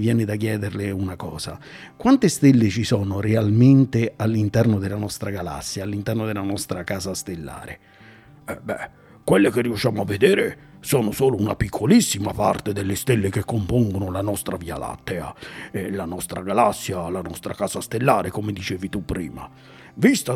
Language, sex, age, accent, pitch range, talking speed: Italian, male, 50-69, native, 100-125 Hz, 150 wpm